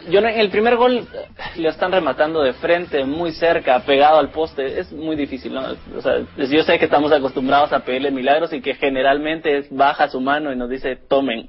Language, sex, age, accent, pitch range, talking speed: Spanish, male, 20-39, Mexican, 130-170 Hz, 210 wpm